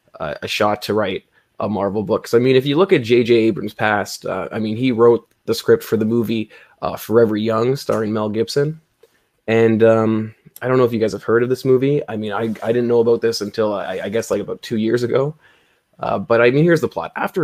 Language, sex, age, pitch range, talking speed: English, male, 20-39, 110-135 Hz, 250 wpm